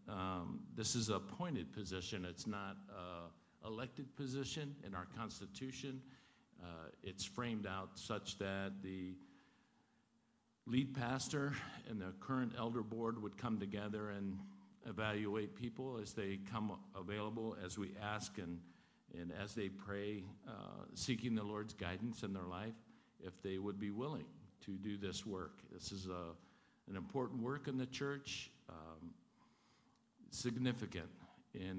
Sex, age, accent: male, 50-69, American